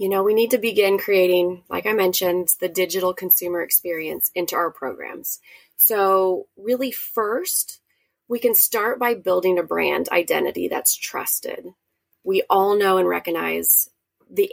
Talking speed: 150 wpm